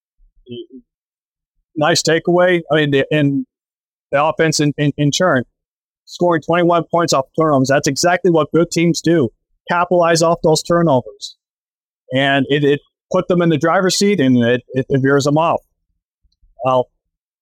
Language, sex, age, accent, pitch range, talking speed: English, male, 30-49, American, 125-155 Hz, 145 wpm